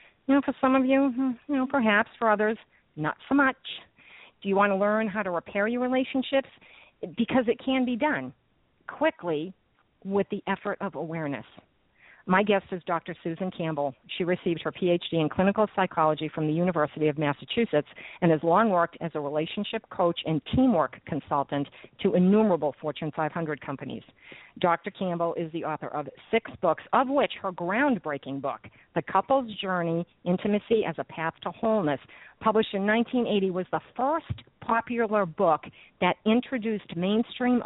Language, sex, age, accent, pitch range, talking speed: English, female, 50-69, American, 160-220 Hz, 165 wpm